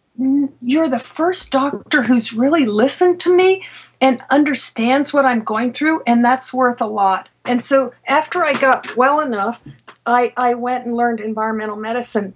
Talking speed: 165 wpm